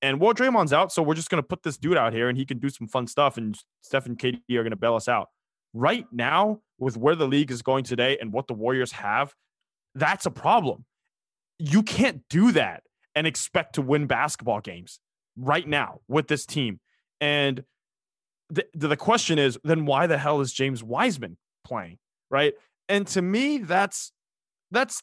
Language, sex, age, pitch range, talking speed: English, male, 20-39, 125-170 Hz, 200 wpm